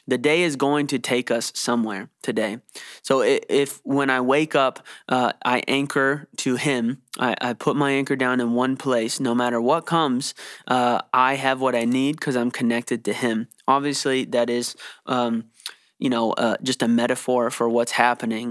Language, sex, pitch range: English, male, 120-140 Hz